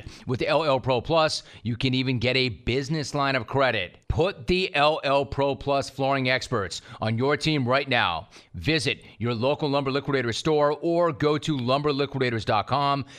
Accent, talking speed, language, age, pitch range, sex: American, 165 wpm, English, 30-49, 110-135 Hz, male